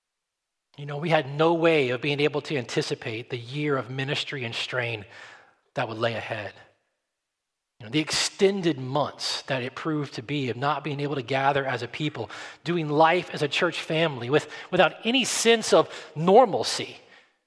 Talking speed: 180 wpm